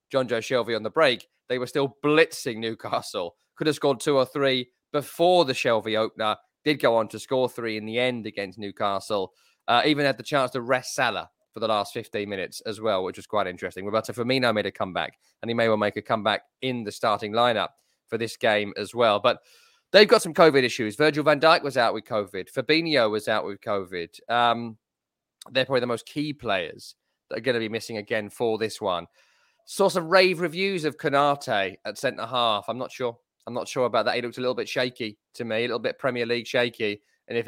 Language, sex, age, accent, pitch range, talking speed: English, male, 20-39, British, 115-150 Hz, 225 wpm